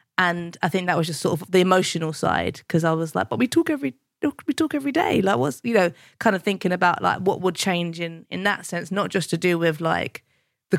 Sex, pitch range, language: female, 160-185 Hz, English